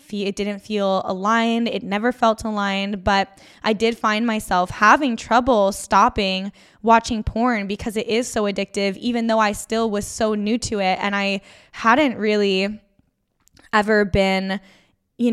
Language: English